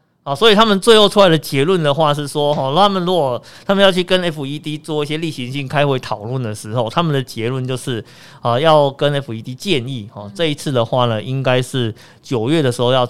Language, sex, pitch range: Chinese, male, 120-165 Hz